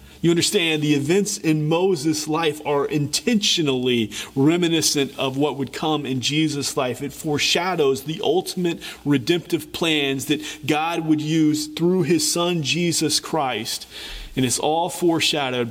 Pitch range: 140-170 Hz